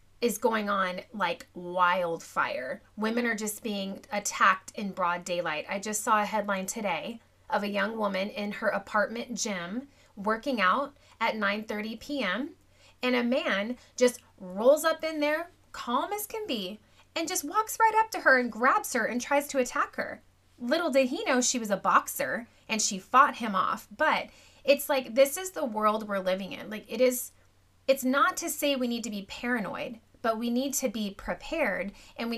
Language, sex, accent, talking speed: English, female, American, 185 wpm